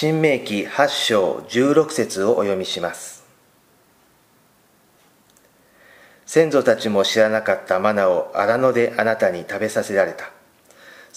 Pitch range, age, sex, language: 105-130 Hz, 40-59, male, Japanese